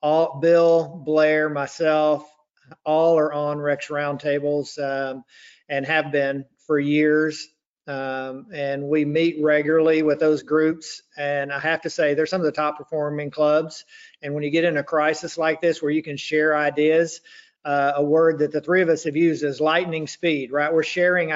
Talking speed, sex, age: 180 wpm, male, 50-69